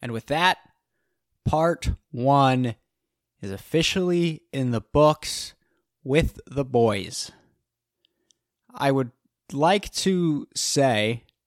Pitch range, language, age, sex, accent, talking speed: 115-145 Hz, English, 20-39, male, American, 95 wpm